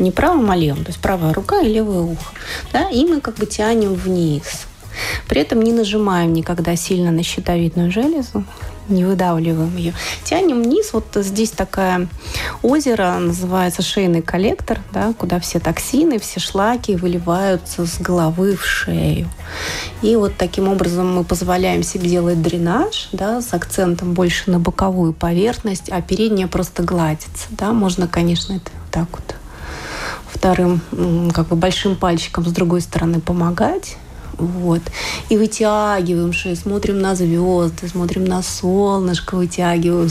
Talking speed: 145 wpm